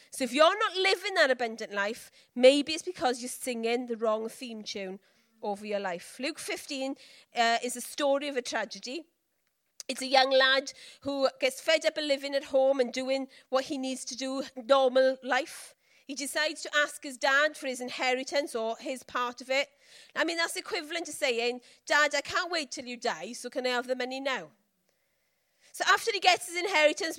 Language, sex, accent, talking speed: English, female, British, 200 wpm